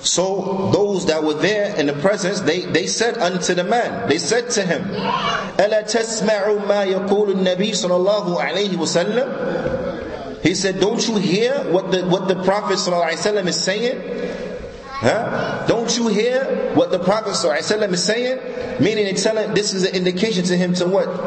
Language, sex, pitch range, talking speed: English, male, 165-210 Hz, 140 wpm